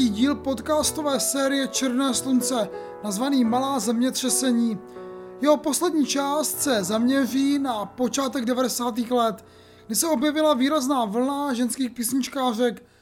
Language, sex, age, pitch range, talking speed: Czech, male, 30-49, 235-285 Hz, 110 wpm